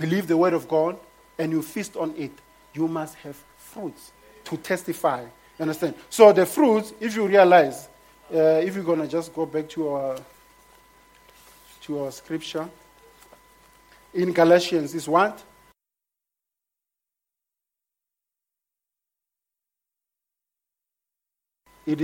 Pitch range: 155-190 Hz